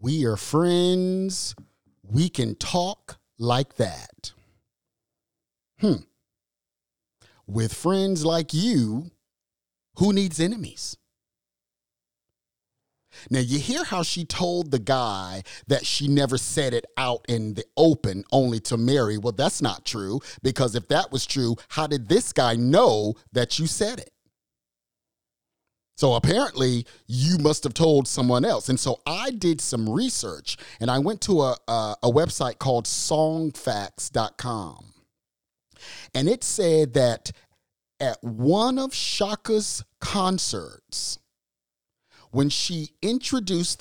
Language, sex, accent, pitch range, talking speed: English, male, American, 110-165 Hz, 125 wpm